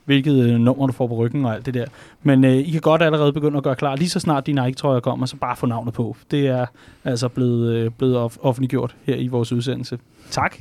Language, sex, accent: Danish, male, native